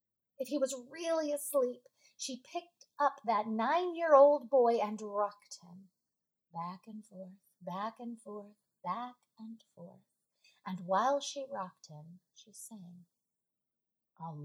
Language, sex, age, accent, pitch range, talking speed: English, female, 30-49, American, 185-265 Hz, 130 wpm